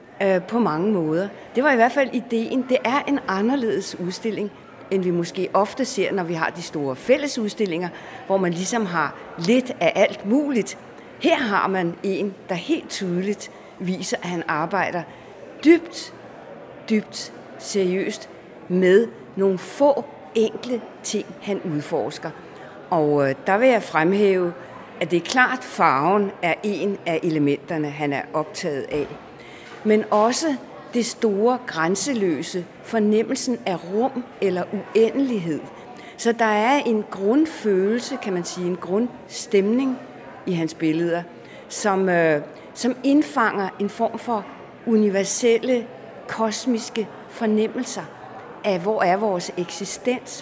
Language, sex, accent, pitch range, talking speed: Danish, female, native, 185-235 Hz, 130 wpm